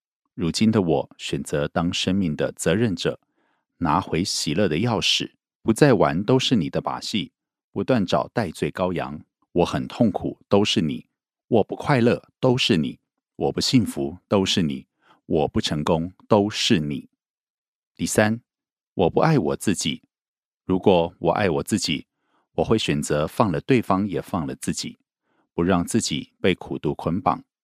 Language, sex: Korean, male